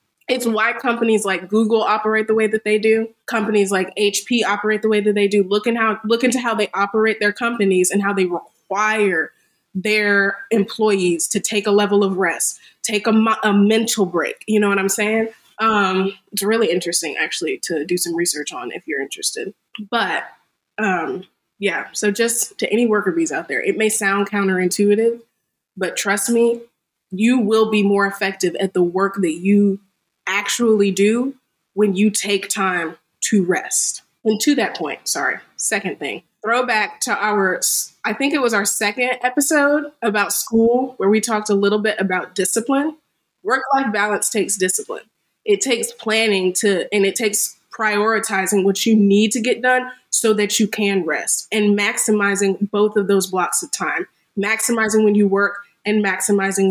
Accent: American